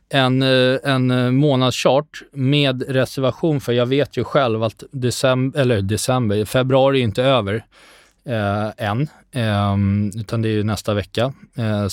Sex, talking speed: male, 140 wpm